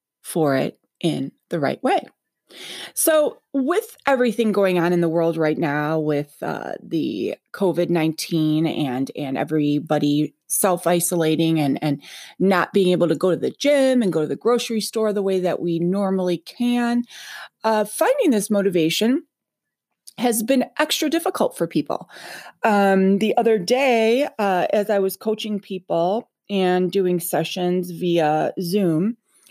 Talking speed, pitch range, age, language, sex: 150 wpm, 165-220 Hz, 30-49, English, female